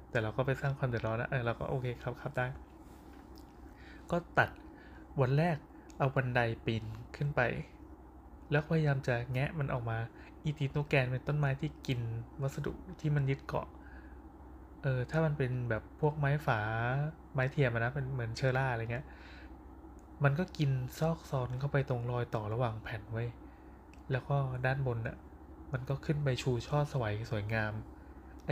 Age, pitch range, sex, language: 20-39, 115-140 Hz, male, Thai